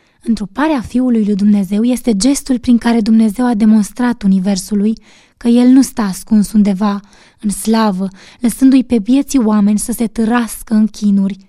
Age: 20-39